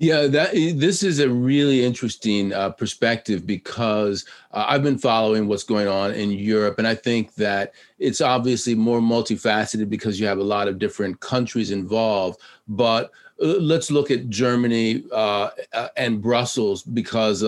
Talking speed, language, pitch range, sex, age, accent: 160 wpm, English, 105-130 Hz, male, 40-59, American